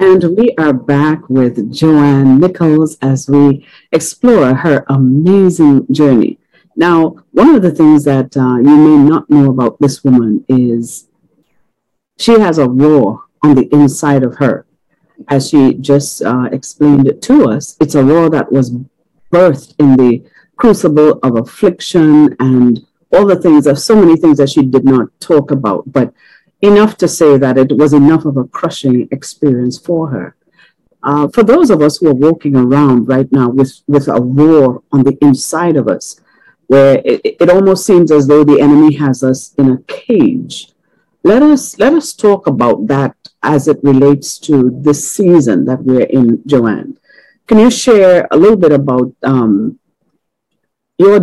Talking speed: 170 wpm